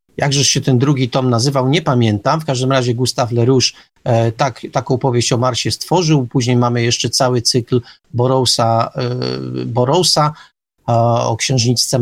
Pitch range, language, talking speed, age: 125-155 Hz, Polish, 155 wpm, 40-59